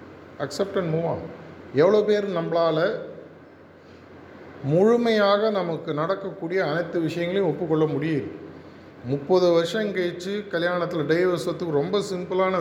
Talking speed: 95 wpm